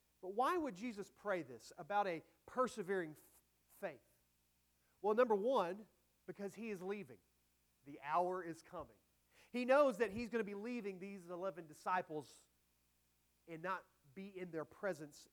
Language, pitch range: English, 155-210 Hz